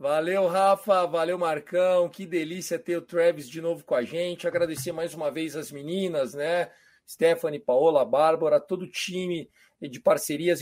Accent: Brazilian